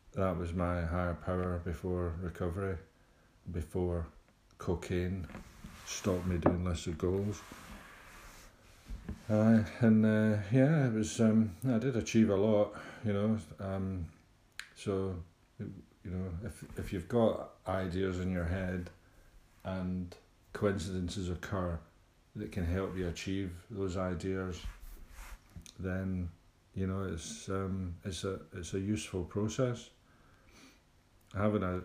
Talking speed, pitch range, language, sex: 120 wpm, 85-105 Hz, English, male